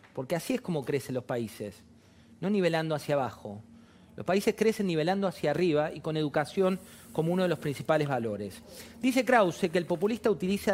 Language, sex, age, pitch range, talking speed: Spanish, male, 40-59, 130-190 Hz, 180 wpm